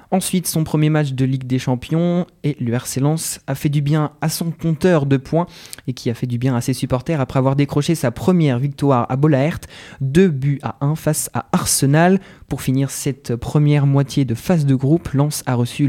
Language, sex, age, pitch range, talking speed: French, male, 20-39, 130-155 Hz, 215 wpm